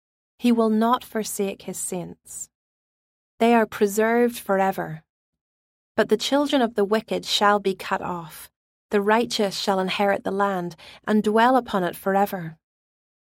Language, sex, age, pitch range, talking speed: English, female, 30-49, 185-225 Hz, 140 wpm